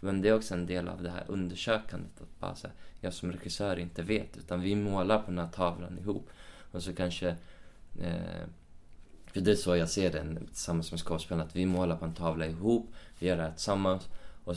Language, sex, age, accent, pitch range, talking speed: Swedish, male, 20-39, native, 85-100 Hz, 210 wpm